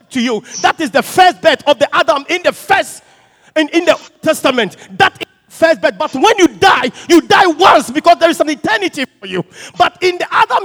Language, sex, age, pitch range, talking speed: English, male, 50-69, 240-340 Hz, 230 wpm